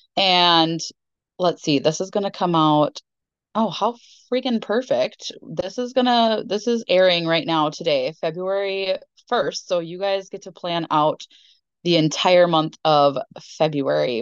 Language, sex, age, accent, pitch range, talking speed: English, female, 20-39, American, 165-220 Hz, 155 wpm